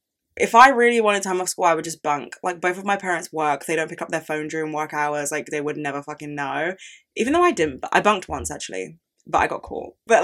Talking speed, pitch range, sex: 265 wpm, 155-220 Hz, female